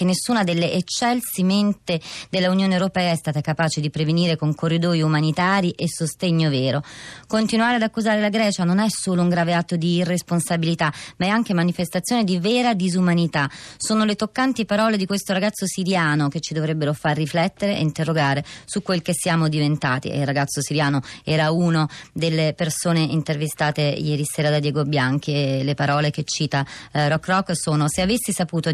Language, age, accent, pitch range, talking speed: Italian, 30-49, native, 155-190 Hz, 175 wpm